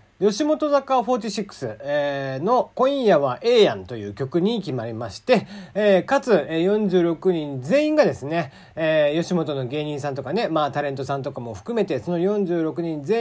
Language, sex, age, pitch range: Japanese, male, 40-59, 140-215 Hz